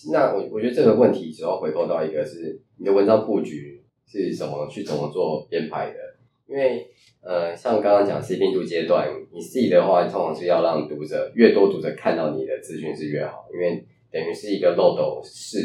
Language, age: Chinese, 20-39